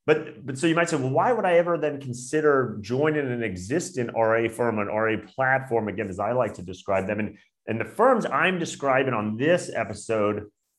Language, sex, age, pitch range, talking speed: English, male, 30-49, 110-135 Hz, 205 wpm